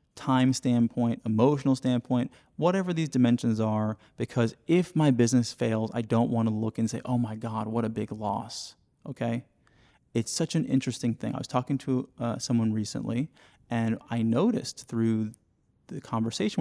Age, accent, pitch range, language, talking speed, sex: 30-49, American, 115-140 Hz, English, 165 wpm, male